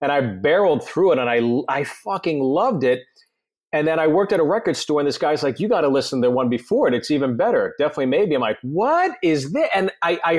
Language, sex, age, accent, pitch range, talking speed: English, male, 40-59, American, 140-195 Hz, 255 wpm